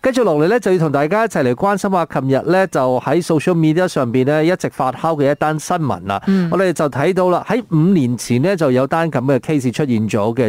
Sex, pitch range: male, 125-175 Hz